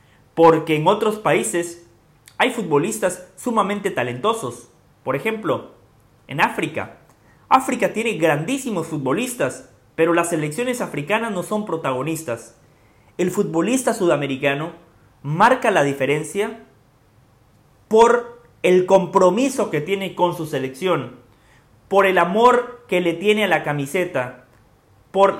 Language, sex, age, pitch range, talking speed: English, male, 30-49, 135-200 Hz, 110 wpm